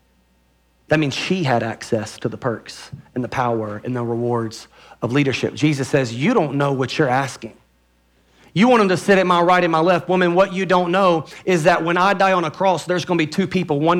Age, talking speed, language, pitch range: 40-59, 235 wpm, English, 125-185 Hz